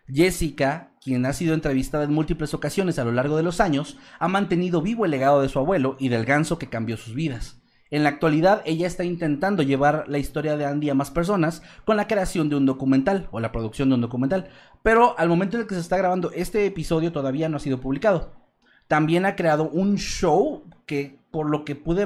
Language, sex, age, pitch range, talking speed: Spanish, male, 30-49, 135-180 Hz, 220 wpm